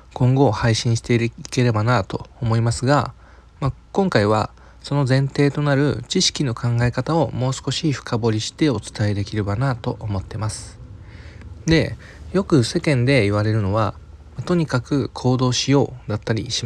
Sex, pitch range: male, 105-150 Hz